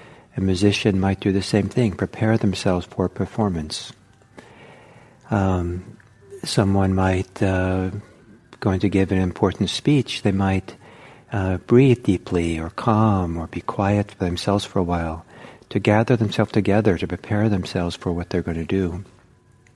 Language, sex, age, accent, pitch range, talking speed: English, male, 60-79, American, 95-120 Hz, 150 wpm